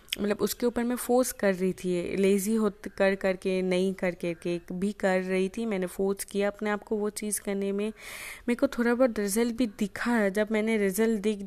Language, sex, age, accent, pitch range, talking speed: Hindi, female, 20-39, native, 185-230 Hz, 235 wpm